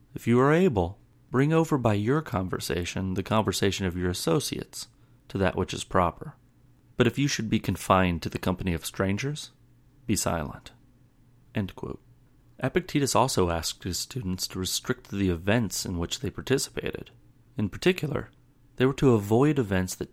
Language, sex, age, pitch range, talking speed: English, male, 30-49, 95-125 Hz, 165 wpm